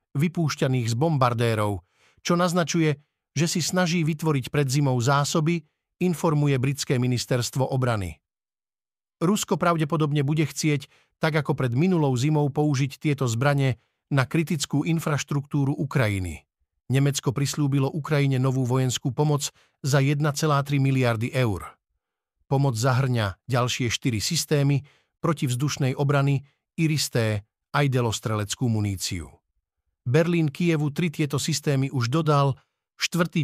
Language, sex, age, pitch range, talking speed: Slovak, male, 50-69, 125-150 Hz, 110 wpm